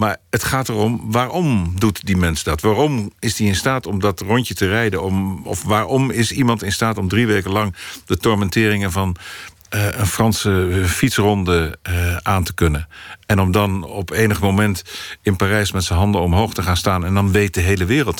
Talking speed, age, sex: 200 wpm, 50-69, male